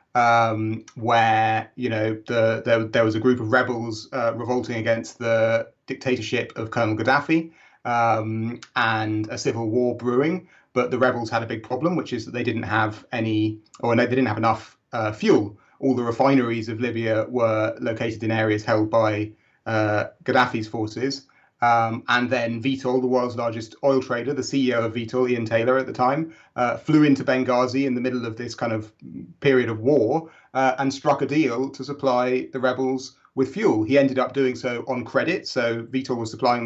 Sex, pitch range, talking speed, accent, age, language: male, 115-130 Hz, 190 wpm, British, 30-49, English